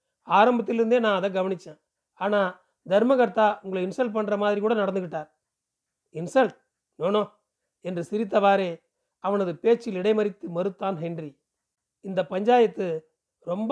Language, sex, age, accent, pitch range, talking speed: Tamil, male, 40-59, native, 185-225 Hz, 105 wpm